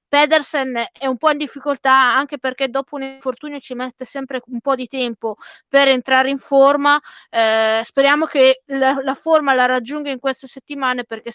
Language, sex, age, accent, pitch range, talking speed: Italian, female, 20-39, native, 230-270 Hz, 180 wpm